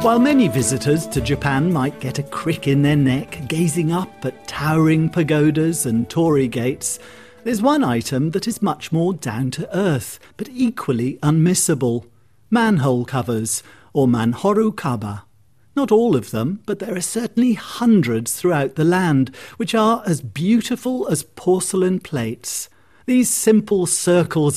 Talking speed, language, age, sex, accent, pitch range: 140 wpm, English, 50-69, male, British, 130-190 Hz